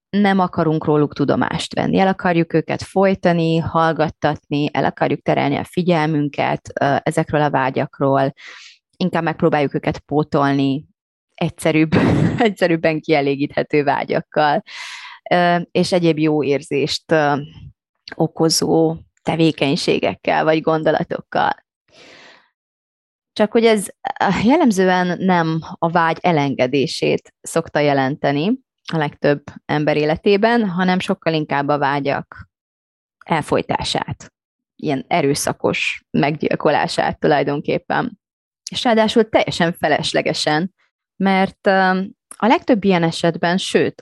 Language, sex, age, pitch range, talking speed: Hungarian, female, 20-39, 145-190 Hz, 95 wpm